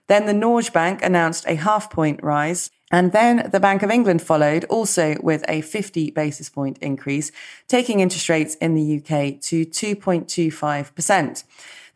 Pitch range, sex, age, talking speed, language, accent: 155-200 Hz, female, 30-49, 155 wpm, English, British